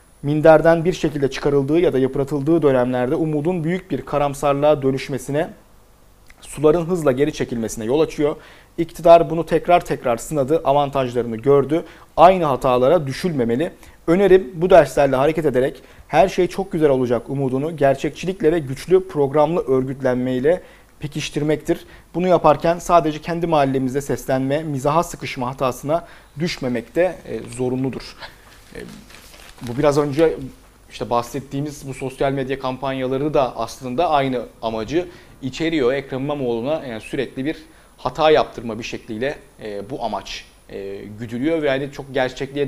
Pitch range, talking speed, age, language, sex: 125-155 Hz, 125 wpm, 40-59, Turkish, male